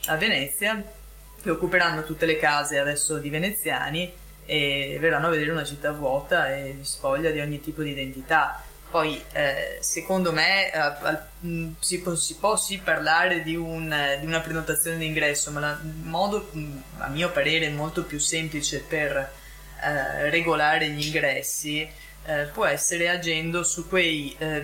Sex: female